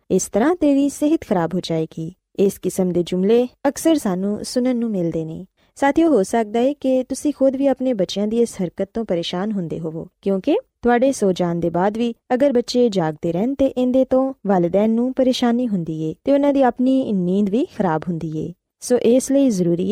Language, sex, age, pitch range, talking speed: Punjabi, female, 20-39, 180-255 Hz, 150 wpm